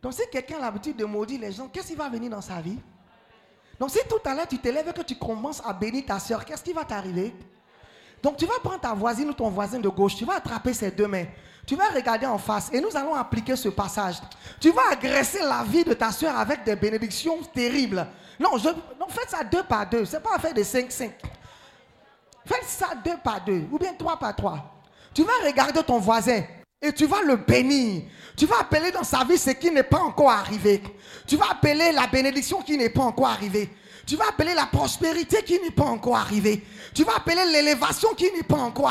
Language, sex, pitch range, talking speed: French, male, 220-300 Hz, 230 wpm